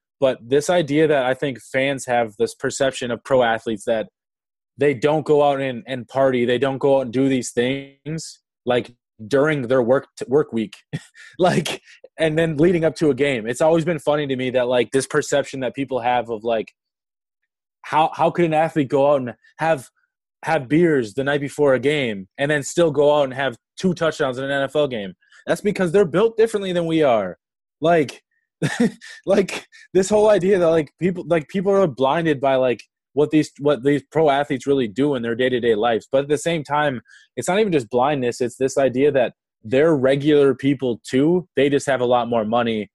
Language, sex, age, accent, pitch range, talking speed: English, male, 20-39, American, 125-155 Hz, 210 wpm